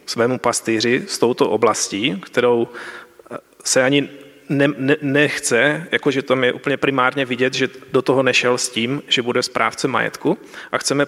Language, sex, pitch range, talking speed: Slovak, male, 125-140 Hz, 155 wpm